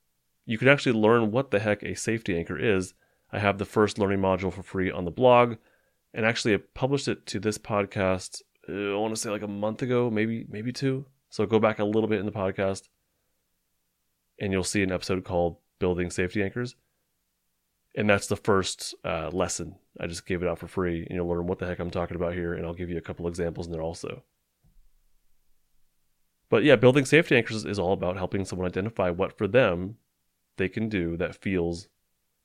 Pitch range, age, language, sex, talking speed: 90-110 Hz, 30-49, English, male, 205 wpm